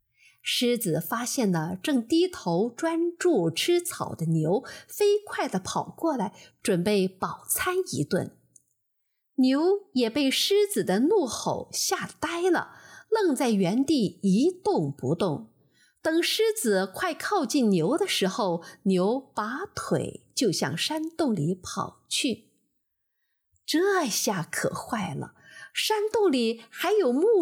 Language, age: Chinese, 50-69